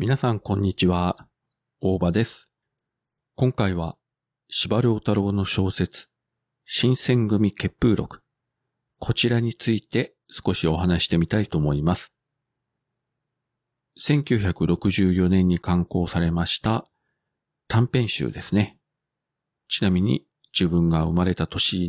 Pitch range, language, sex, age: 90-130 Hz, Japanese, male, 40-59